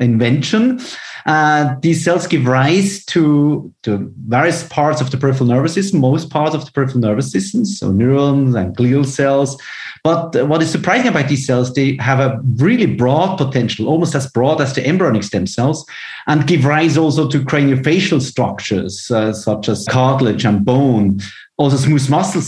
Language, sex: English, male